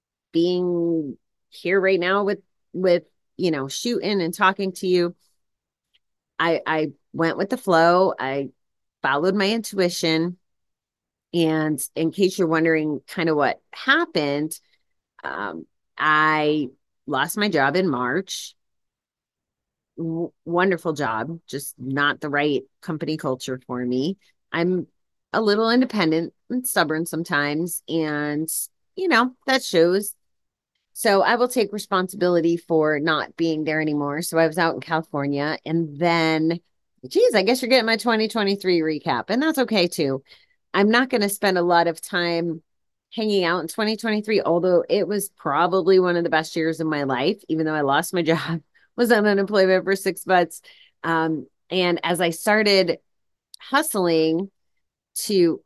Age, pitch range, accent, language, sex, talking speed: 30-49, 155-195 Hz, American, English, female, 145 wpm